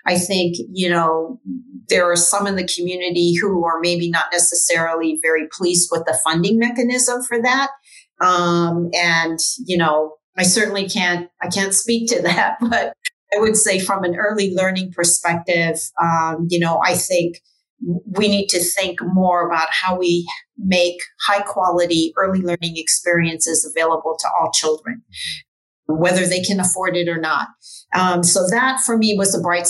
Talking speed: 165 wpm